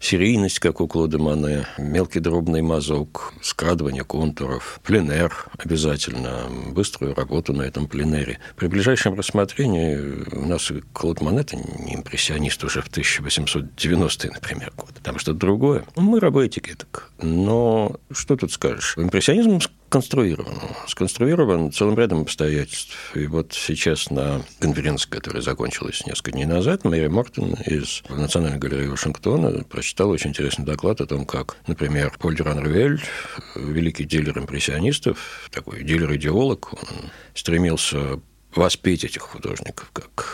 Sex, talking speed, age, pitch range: male, 125 wpm, 60-79, 75-95 Hz